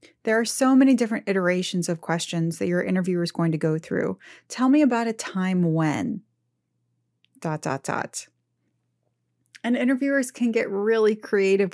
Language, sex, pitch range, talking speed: English, female, 165-215 Hz, 160 wpm